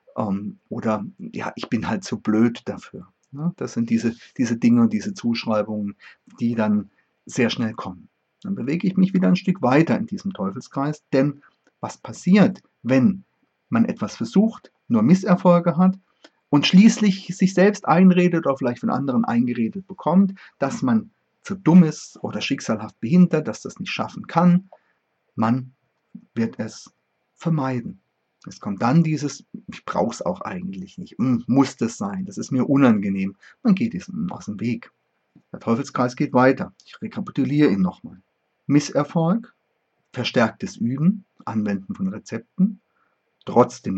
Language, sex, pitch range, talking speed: German, male, 130-205 Hz, 145 wpm